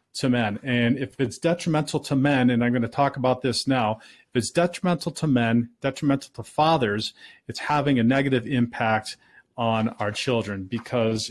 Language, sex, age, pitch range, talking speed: English, male, 40-59, 120-160 Hz, 175 wpm